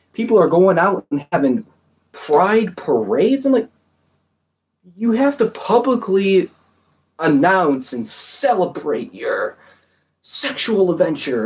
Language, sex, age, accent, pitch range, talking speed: English, male, 30-49, American, 135-195 Hz, 105 wpm